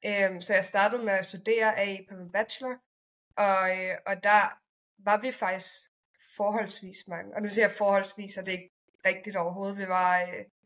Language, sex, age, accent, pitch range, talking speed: Danish, female, 20-39, native, 185-215 Hz, 185 wpm